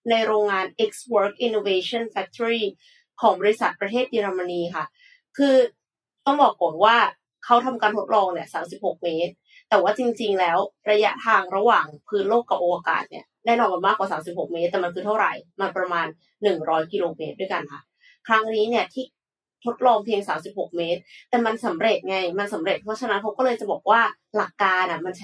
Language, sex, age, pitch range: Thai, female, 20-39, 180-230 Hz